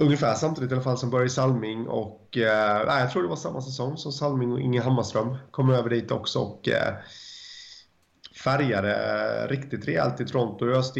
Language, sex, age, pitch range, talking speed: Swedish, male, 30-49, 105-130 Hz, 195 wpm